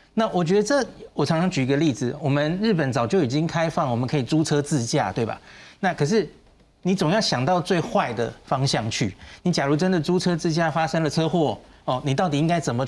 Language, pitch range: Chinese, 130-175 Hz